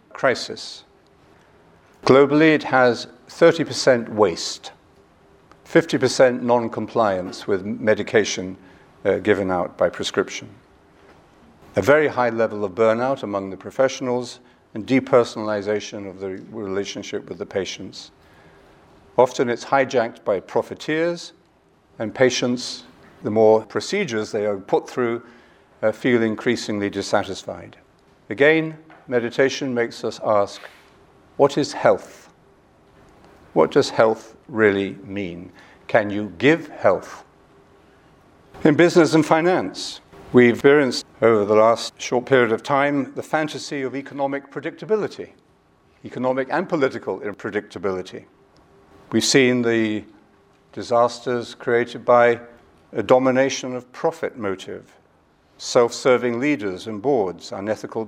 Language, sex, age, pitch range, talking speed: English, male, 50-69, 105-140 Hz, 110 wpm